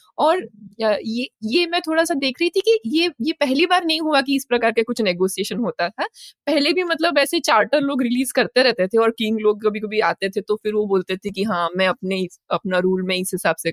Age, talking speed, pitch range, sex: 20-39, 245 wpm, 200-290 Hz, female